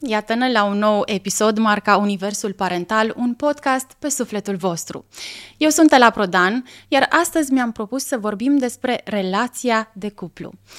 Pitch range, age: 200-260 Hz, 20-39